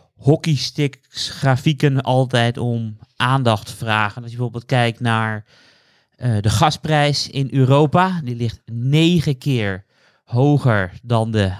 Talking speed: 125 wpm